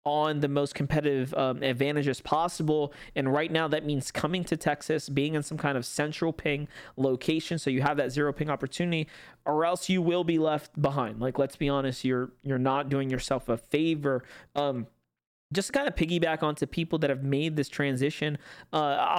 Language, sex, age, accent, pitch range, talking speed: English, male, 20-39, American, 140-165 Hz, 195 wpm